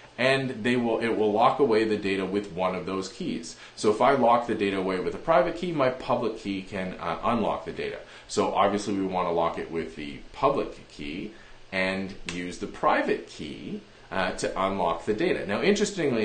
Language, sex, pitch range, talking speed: English, male, 105-145 Hz, 205 wpm